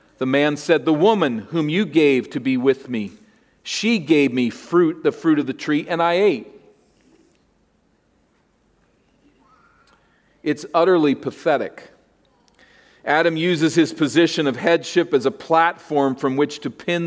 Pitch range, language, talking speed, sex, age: 145-185 Hz, English, 140 wpm, male, 40-59